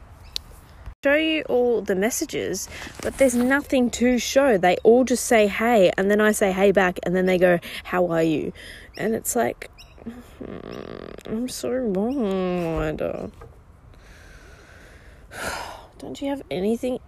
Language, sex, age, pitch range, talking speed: English, female, 20-39, 165-245 Hz, 135 wpm